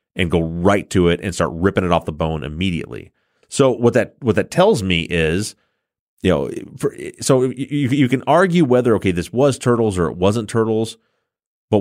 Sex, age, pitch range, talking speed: male, 30-49, 90-120 Hz, 200 wpm